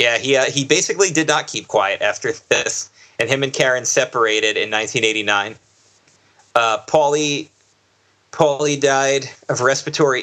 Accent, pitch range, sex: American, 110-140 Hz, male